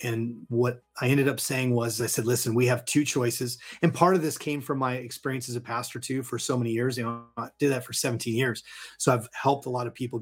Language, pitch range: English, 115-135 Hz